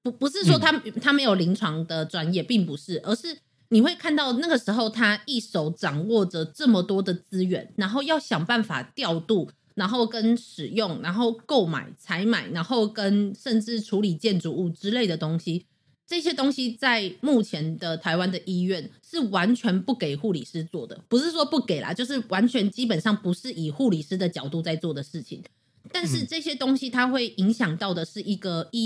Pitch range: 175-235 Hz